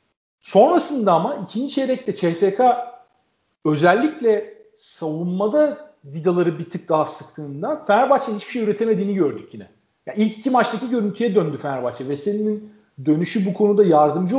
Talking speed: 130 wpm